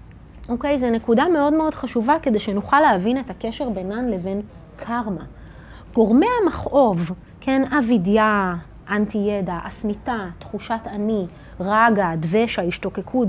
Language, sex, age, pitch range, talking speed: Hebrew, female, 30-49, 210-290 Hz, 120 wpm